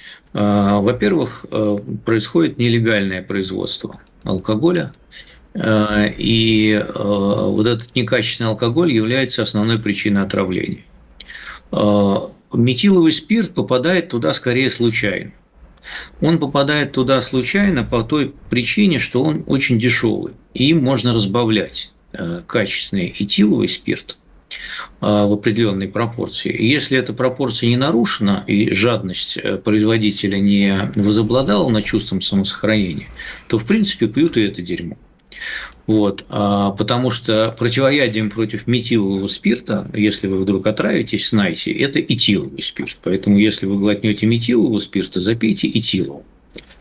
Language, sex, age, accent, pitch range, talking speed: Russian, male, 50-69, native, 105-130 Hz, 105 wpm